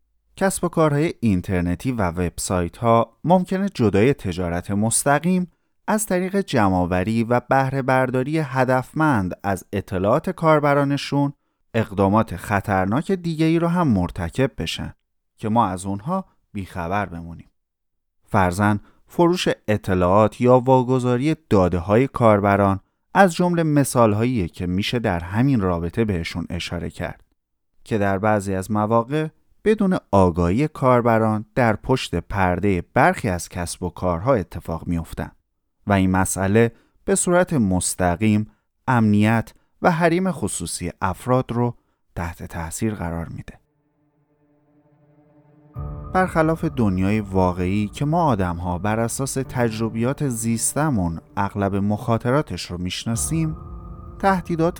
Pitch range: 90-145 Hz